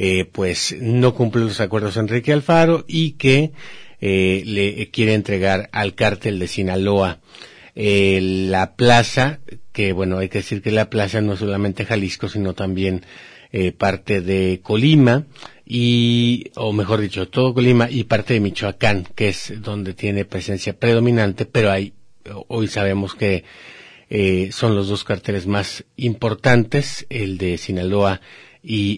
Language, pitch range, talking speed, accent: Spanish, 100-130 Hz, 145 wpm, Mexican